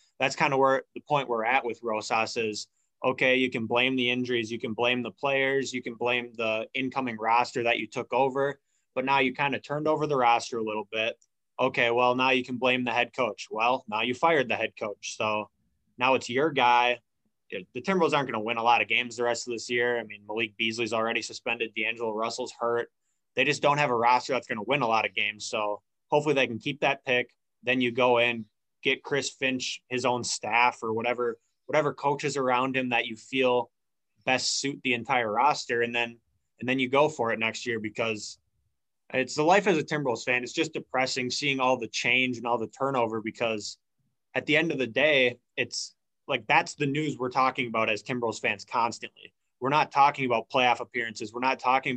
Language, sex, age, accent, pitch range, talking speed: English, male, 20-39, American, 115-130 Hz, 220 wpm